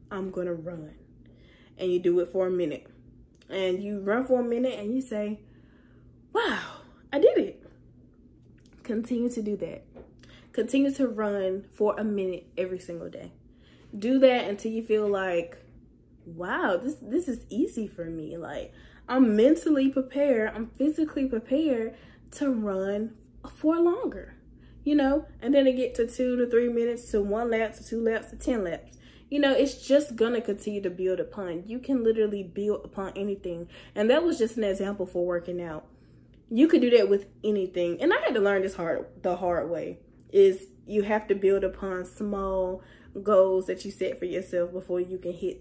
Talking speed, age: 185 wpm, 10-29